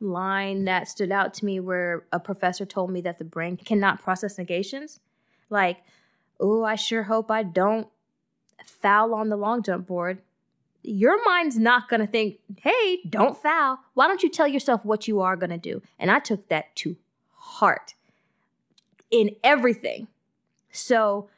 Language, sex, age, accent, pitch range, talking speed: English, female, 20-39, American, 190-230 Hz, 165 wpm